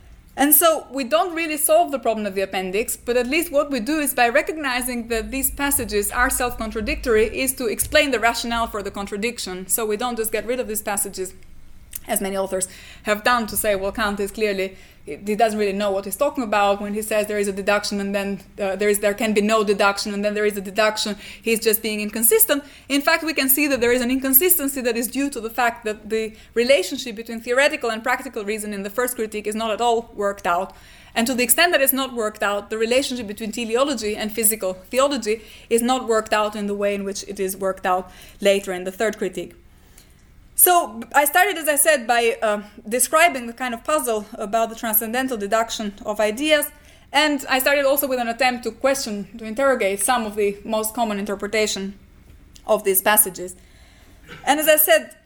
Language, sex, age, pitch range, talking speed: English, female, 20-39, 205-265 Hz, 215 wpm